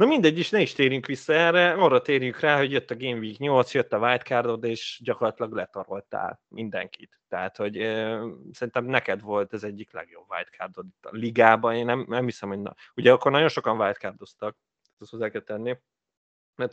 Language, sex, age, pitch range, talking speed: Hungarian, male, 30-49, 110-130 Hz, 195 wpm